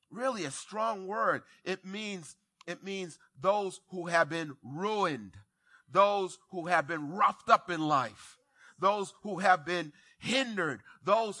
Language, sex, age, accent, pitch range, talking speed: English, male, 30-49, American, 165-230 Hz, 135 wpm